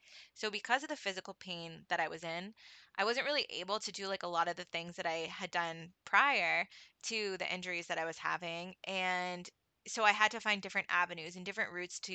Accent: American